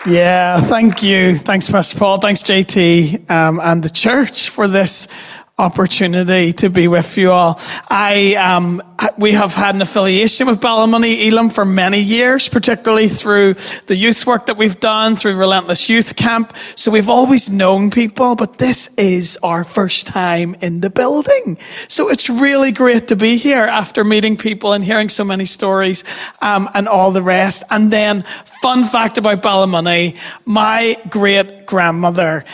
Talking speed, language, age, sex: 160 wpm, English, 30-49, male